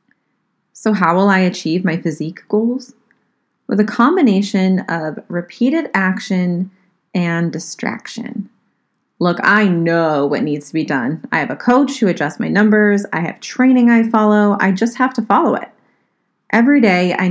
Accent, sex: American, female